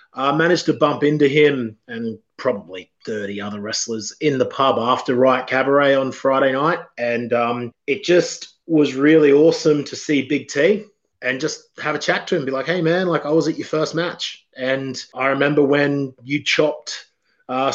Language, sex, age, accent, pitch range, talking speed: English, male, 30-49, Australian, 130-155 Hz, 195 wpm